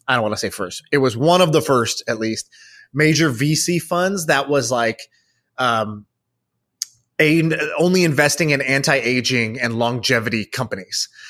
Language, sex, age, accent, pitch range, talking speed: English, male, 20-39, American, 120-155 Hz, 155 wpm